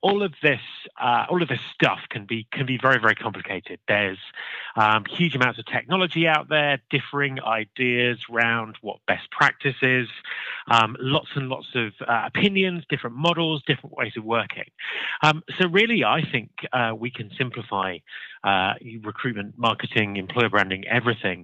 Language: English